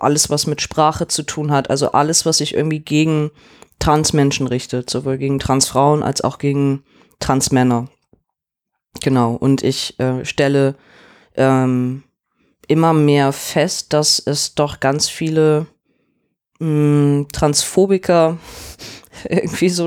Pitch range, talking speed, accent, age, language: 140-165 Hz, 120 wpm, German, 20-39, German